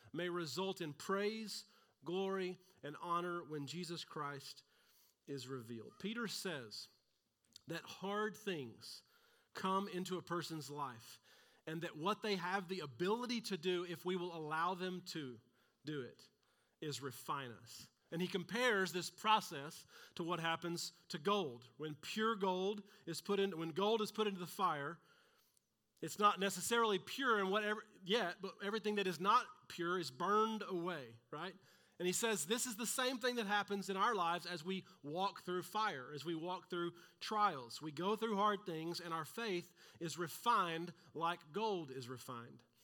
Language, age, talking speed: English, 40-59, 165 wpm